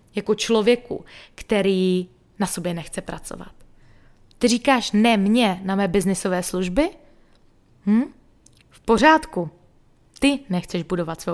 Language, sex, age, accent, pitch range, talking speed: Czech, female, 20-39, native, 190-240 Hz, 110 wpm